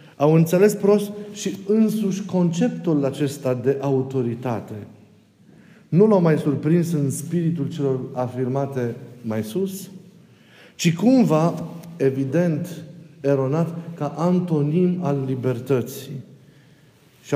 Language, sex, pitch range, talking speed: Romanian, male, 130-180 Hz, 95 wpm